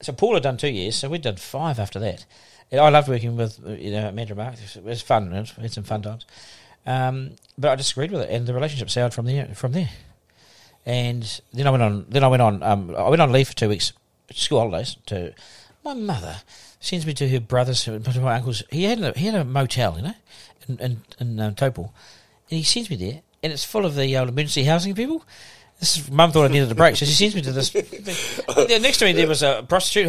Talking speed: 240 wpm